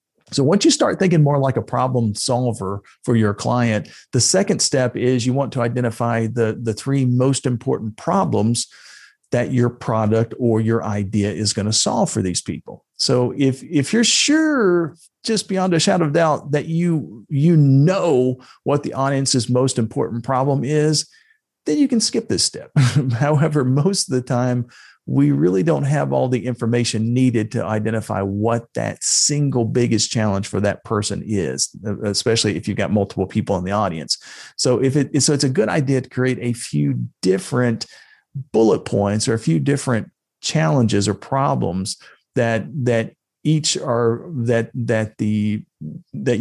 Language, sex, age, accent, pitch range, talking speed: English, male, 50-69, American, 110-140 Hz, 170 wpm